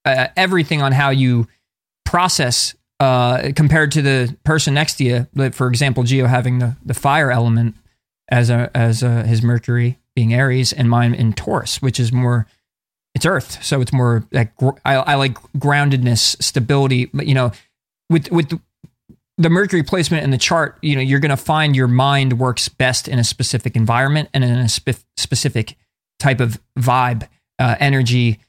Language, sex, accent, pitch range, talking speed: English, male, American, 120-145 Hz, 175 wpm